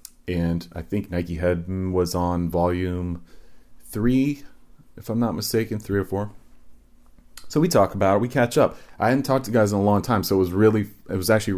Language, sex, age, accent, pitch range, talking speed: English, male, 30-49, American, 85-95 Hz, 205 wpm